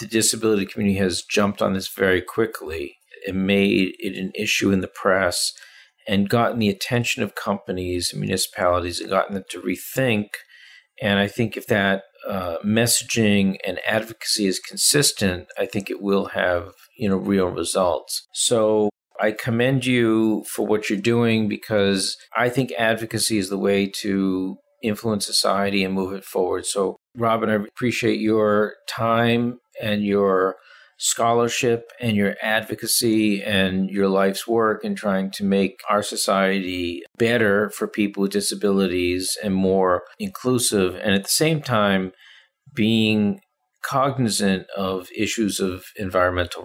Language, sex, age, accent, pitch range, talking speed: English, male, 50-69, American, 95-110 Hz, 145 wpm